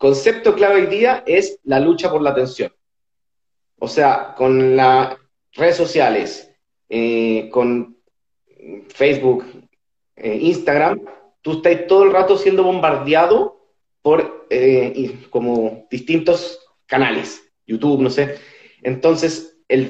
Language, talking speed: Spanish, 110 wpm